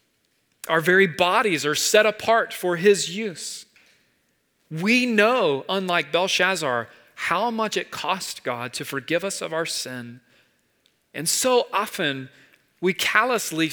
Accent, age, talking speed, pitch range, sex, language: American, 40-59, 125 wpm, 150-210 Hz, male, English